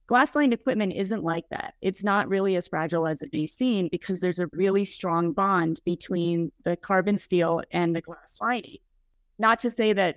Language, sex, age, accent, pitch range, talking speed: English, female, 30-49, American, 175-205 Hz, 190 wpm